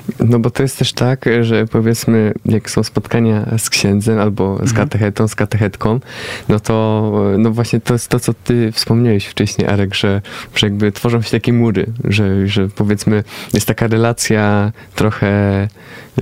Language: Polish